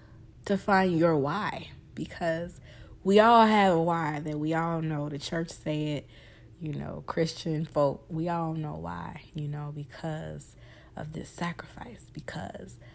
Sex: female